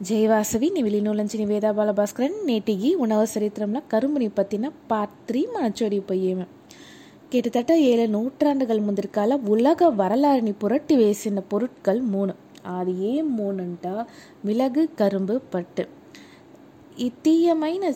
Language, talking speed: Telugu, 85 wpm